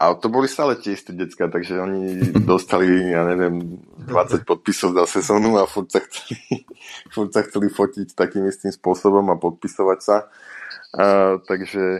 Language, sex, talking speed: Slovak, male, 140 wpm